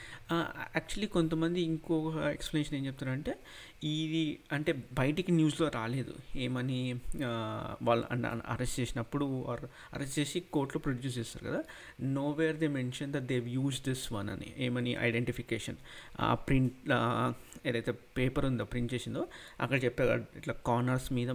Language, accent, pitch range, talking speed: Telugu, native, 120-150 Hz, 120 wpm